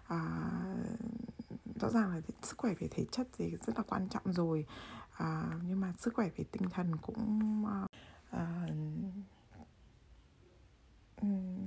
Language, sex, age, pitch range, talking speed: Vietnamese, female, 20-39, 160-205 Hz, 135 wpm